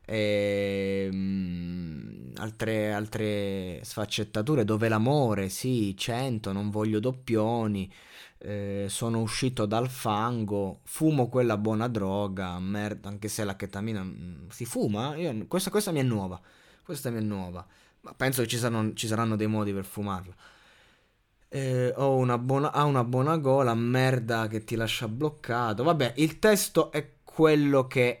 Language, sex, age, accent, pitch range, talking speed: Italian, male, 20-39, native, 100-130 Hz, 145 wpm